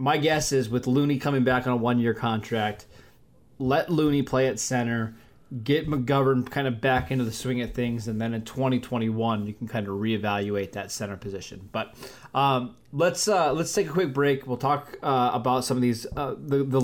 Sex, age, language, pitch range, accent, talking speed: male, 20-39, English, 115-135 Hz, American, 205 wpm